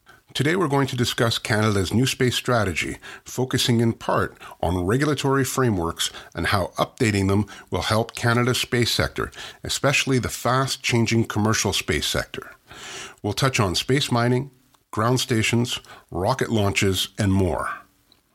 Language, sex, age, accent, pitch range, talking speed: English, male, 50-69, American, 105-130 Hz, 135 wpm